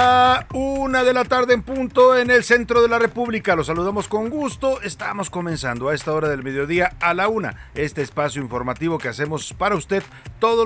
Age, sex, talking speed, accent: 40-59, male, 190 wpm, Mexican